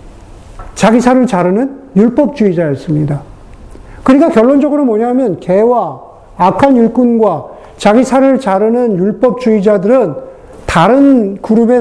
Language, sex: Korean, male